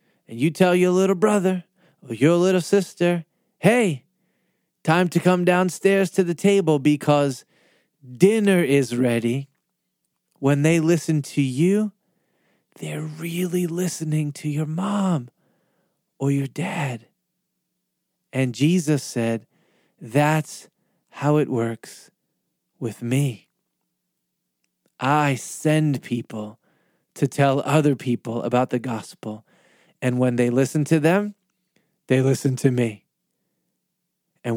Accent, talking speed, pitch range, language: American, 115 wpm, 130-180 Hz, English